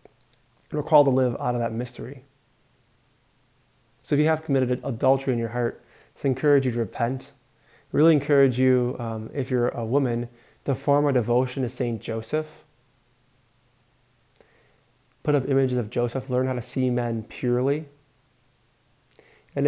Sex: male